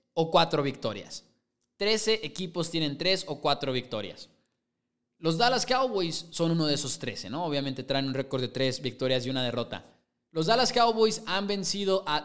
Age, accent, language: 20-39, Mexican, English